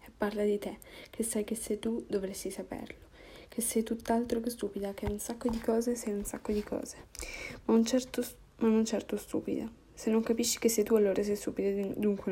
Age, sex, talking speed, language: 10-29, female, 205 wpm, Italian